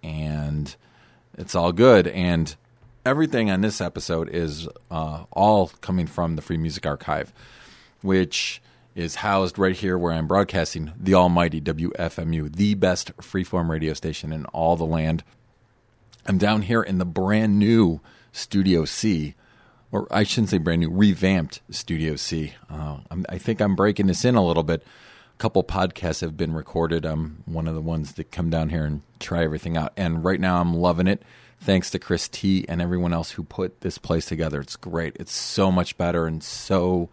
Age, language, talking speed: 40-59, English, 180 wpm